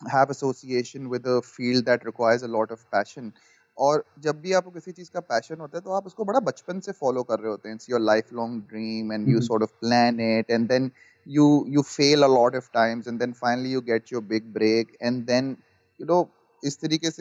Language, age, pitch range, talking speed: English, 30-49, 120-155 Hz, 170 wpm